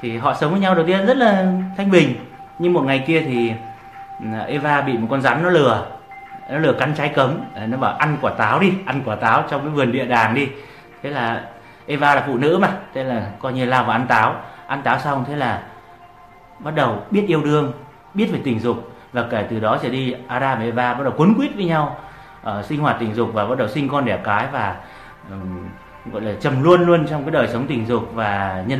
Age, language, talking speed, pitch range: 30-49, Vietnamese, 240 wpm, 115-150 Hz